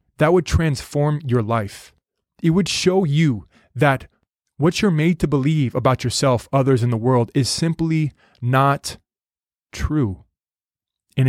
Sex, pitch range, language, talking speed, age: male, 120-150 Hz, English, 140 wpm, 20-39